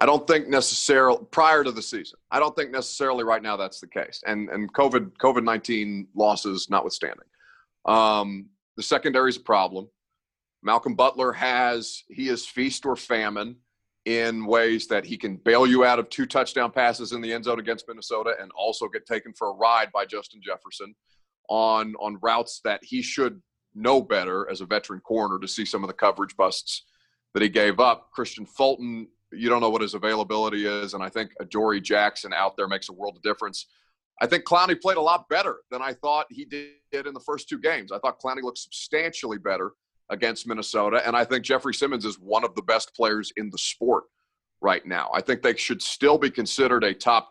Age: 30-49